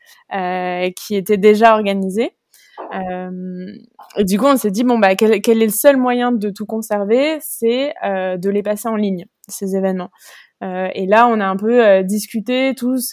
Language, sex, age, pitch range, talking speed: French, female, 20-39, 195-240 Hz, 185 wpm